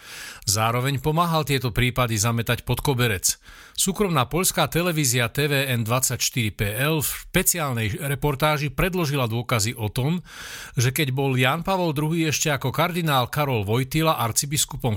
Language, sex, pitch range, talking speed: Slovak, male, 115-155 Hz, 120 wpm